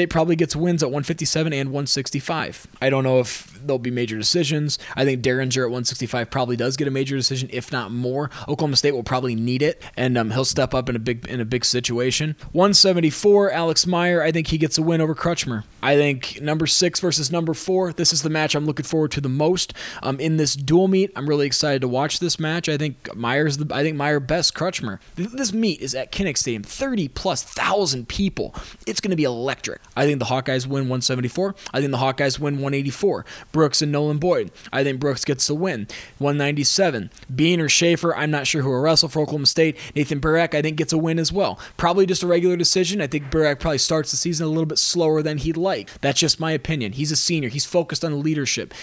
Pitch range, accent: 135-165 Hz, American